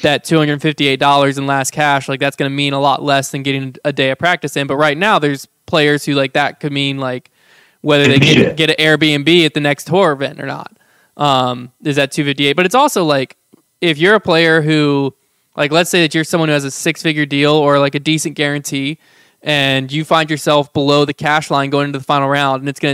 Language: English